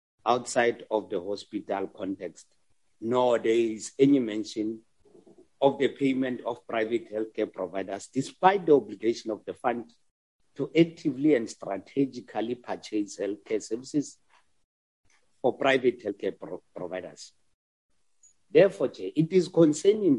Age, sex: 50-69, male